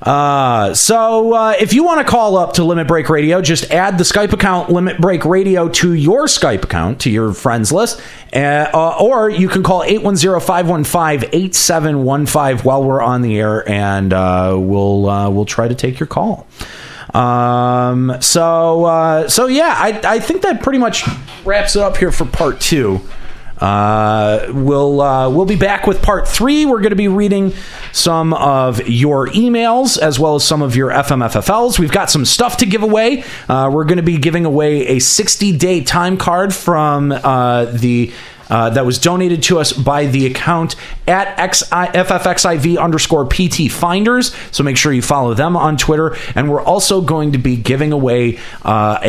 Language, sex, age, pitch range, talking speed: English, male, 30-49, 120-180 Hz, 180 wpm